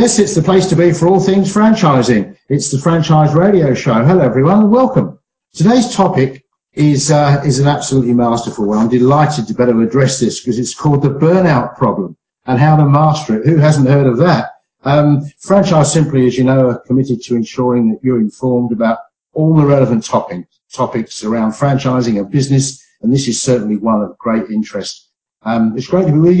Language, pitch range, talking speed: English, 120-155 Hz, 195 wpm